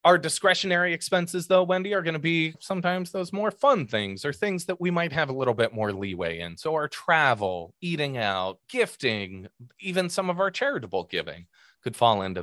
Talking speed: 200 wpm